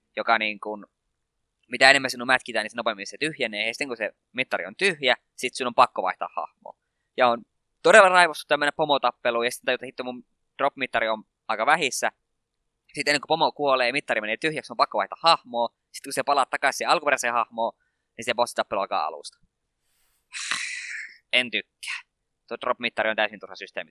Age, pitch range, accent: 20-39, 110-135 Hz, native